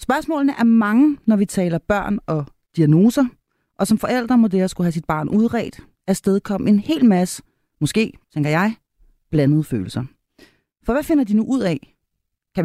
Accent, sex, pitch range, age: native, female, 155-230 Hz, 30-49